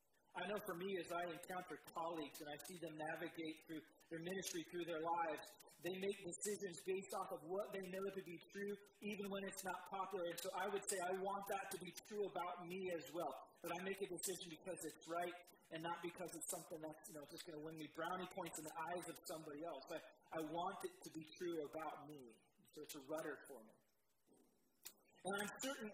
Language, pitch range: English, 165-215 Hz